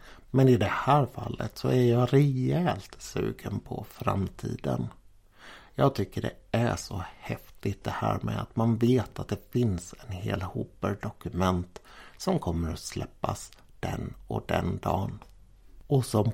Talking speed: 145 wpm